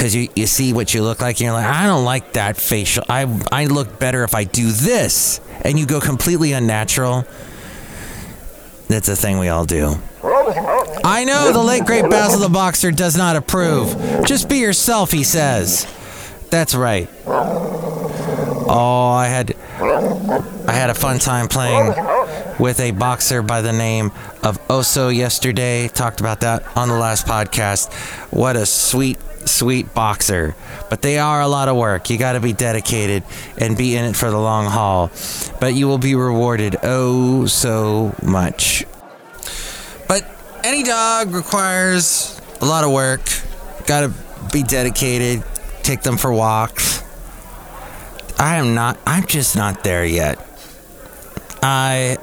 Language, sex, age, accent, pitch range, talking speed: English, male, 30-49, American, 110-140 Hz, 155 wpm